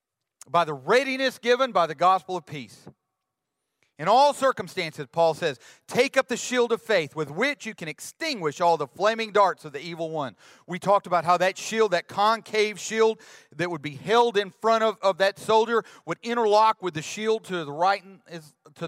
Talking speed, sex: 190 wpm, male